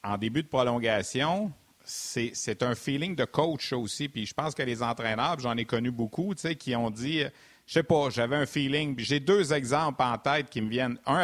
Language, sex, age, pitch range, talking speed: French, male, 50-69, 125-170 Hz, 235 wpm